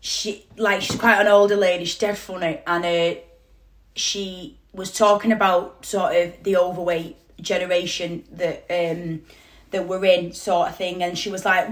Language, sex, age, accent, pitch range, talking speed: English, female, 20-39, British, 180-240 Hz, 165 wpm